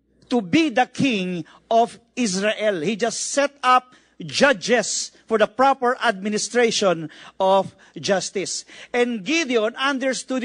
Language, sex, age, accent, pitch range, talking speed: English, male, 40-59, Filipino, 210-260 Hz, 115 wpm